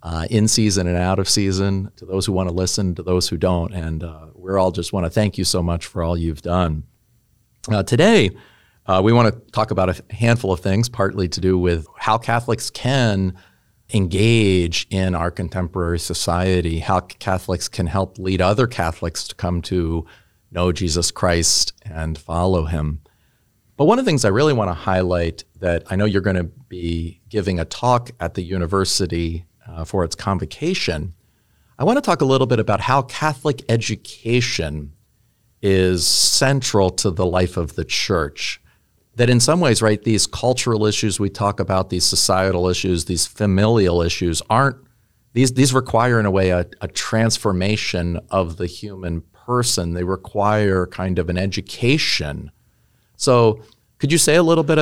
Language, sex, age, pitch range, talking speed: English, male, 40-59, 90-115 Hz, 175 wpm